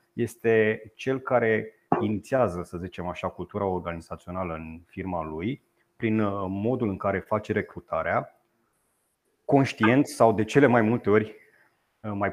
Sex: male